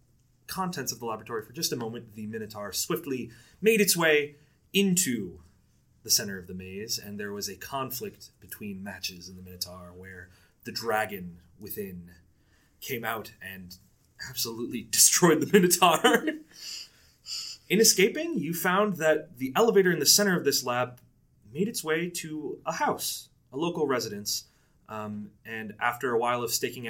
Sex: male